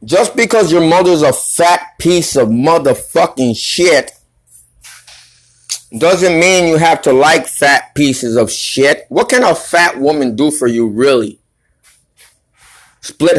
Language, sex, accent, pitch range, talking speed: English, male, American, 125-180 Hz, 135 wpm